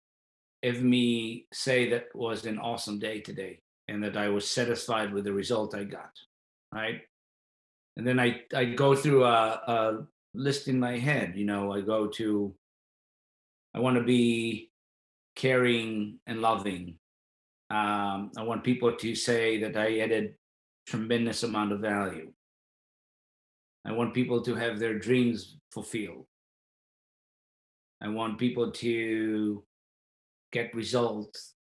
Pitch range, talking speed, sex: 105-125 Hz, 135 wpm, male